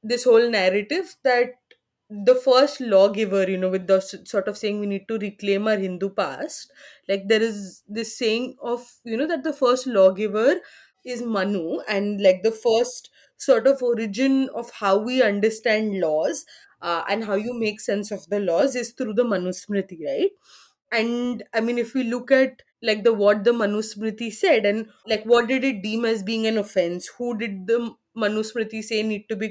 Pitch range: 210-250 Hz